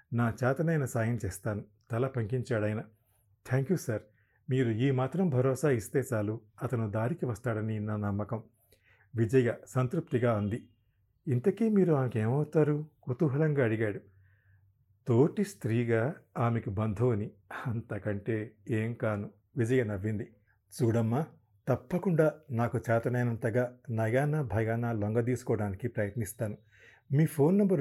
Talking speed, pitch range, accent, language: 105 wpm, 110-135 Hz, native, Telugu